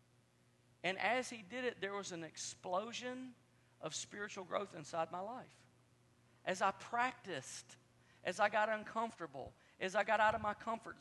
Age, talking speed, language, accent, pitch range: 40-59, 160 wpm, English, American, 165-225 Hz